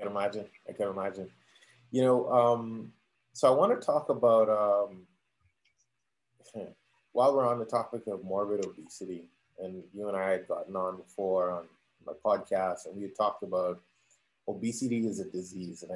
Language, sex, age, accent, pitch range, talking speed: English, male, 20-39, American, 95-120 Hz, 160 wpm